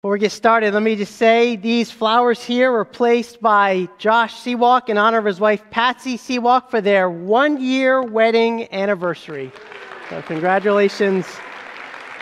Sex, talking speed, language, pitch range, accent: male, 145 wpm, English, 200-250 Hz, American